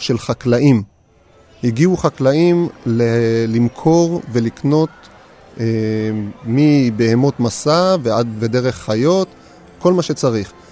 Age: 30-49